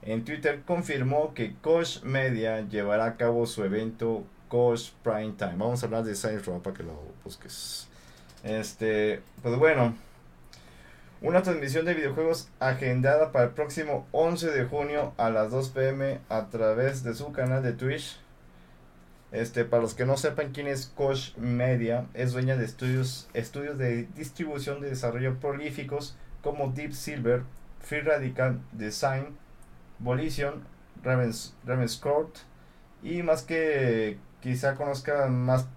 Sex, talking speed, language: male, 140 wpm, Spanish